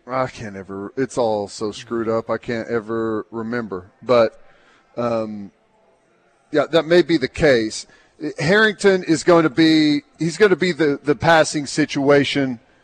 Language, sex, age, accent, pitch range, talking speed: English, male, 40-59, American, 130-170 Hz, 165 wpm